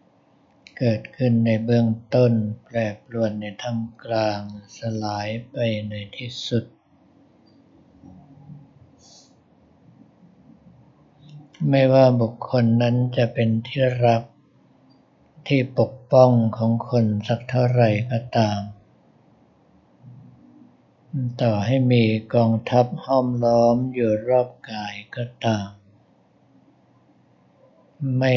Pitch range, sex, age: 110-130 Hz, male, 60-79